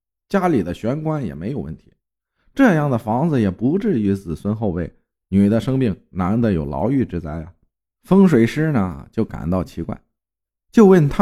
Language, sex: Chinese, male